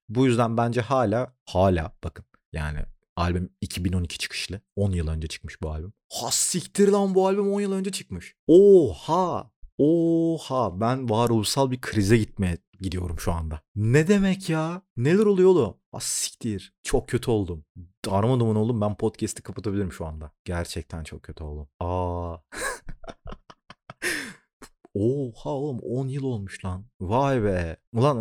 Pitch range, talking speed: 95-125 Hz, 140 wpm